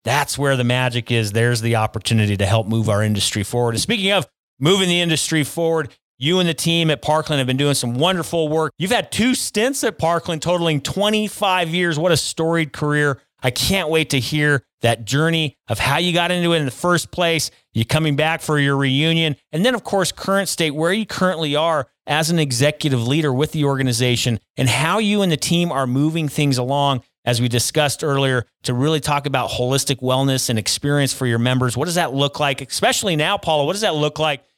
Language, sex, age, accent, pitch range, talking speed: English, male, 40-59, American, 125-165 Hz, 215 wpm